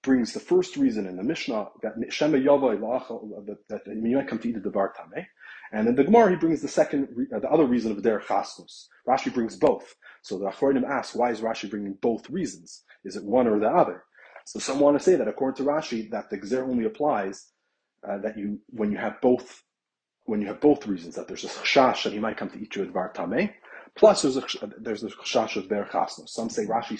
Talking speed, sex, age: 225 wpm, male, 30-49